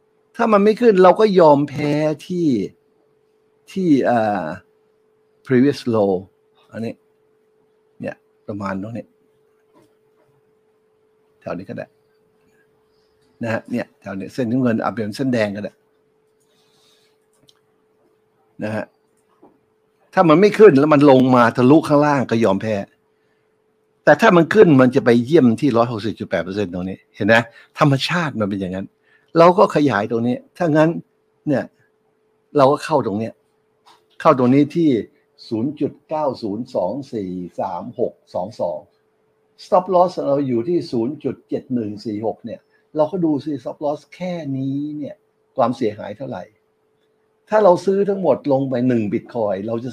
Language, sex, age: Thai, male, 60-79